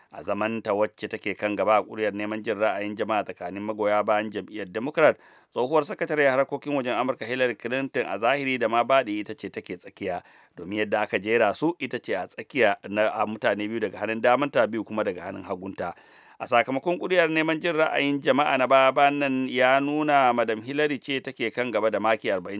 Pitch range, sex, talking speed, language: 105-135 Hz, male, 185 wpm, English